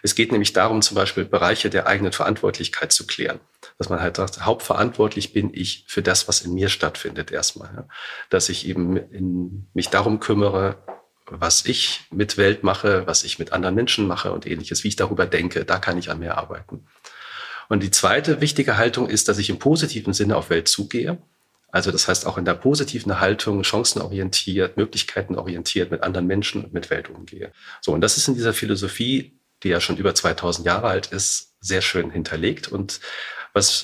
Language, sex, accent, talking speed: German, male, German, 190 wpm